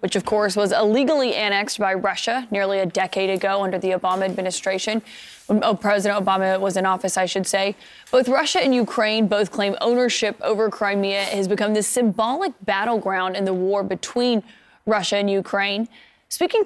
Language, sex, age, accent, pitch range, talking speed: English, female, 10-29, American, 195-225 Hz, 170 wpm